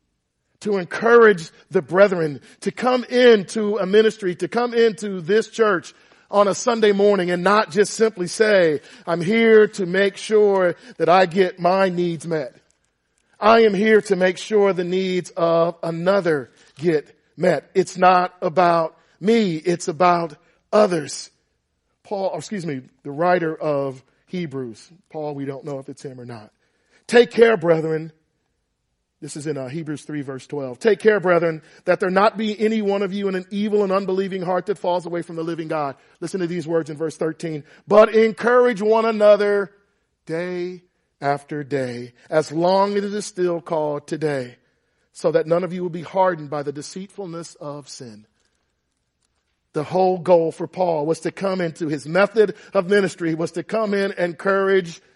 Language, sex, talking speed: English, male, 170 wpm